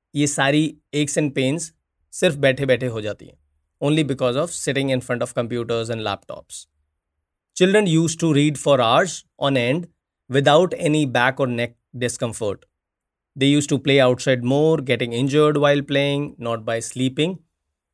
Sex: male